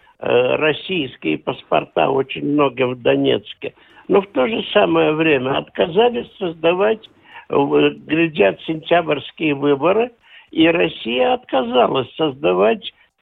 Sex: male